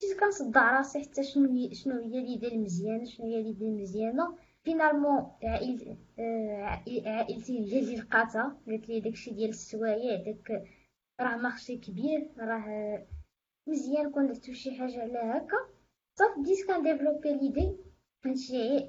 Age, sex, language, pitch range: 20-39, female, Arabic, 225-275 Hz